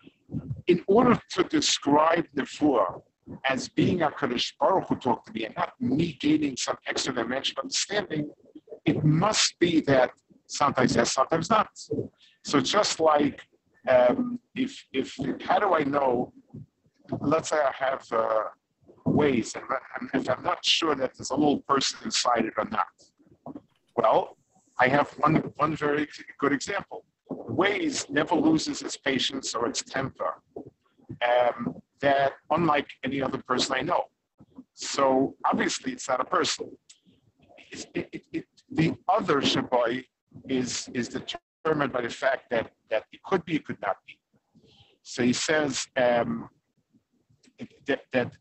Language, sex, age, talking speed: English, male, 50-69, 150 wpm